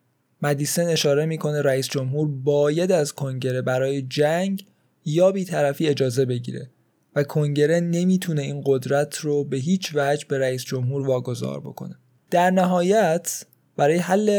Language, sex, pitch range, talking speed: Persian, male, 135-165 Hz, 140 wpm